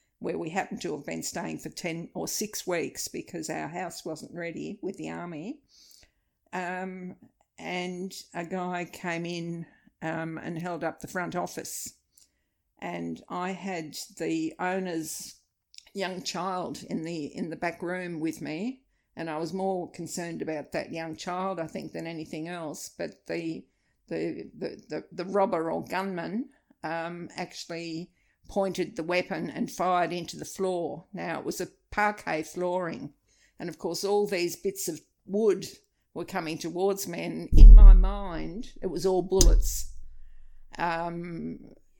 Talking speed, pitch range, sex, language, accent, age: 155 wpm, 165-195 Hz, female, English, Australian, 60-79